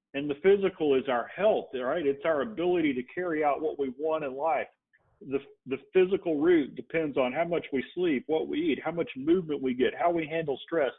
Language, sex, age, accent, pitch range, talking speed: English, male, 40-59, American, 130-170 Hz, 220 wpm